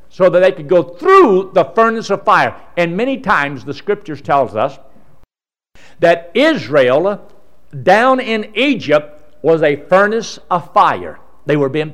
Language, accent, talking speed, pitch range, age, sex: English, American, 150 wpm, 155-230 Hz, 60-79, male